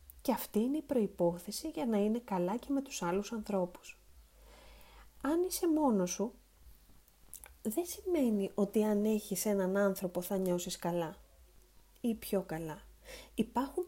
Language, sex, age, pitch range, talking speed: Greek, female, 30-49, 180-230 Hz, 140 wpm